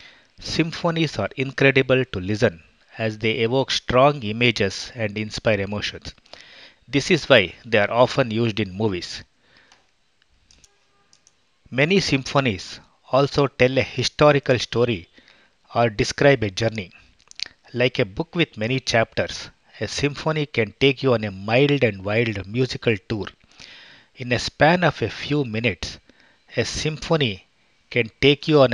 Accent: Indian